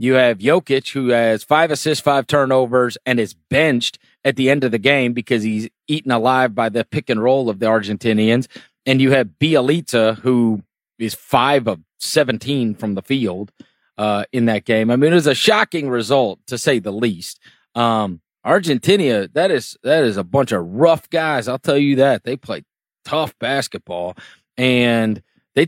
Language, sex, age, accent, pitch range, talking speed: English, male, 30-49, American, 115-150 Hz, 180 wpm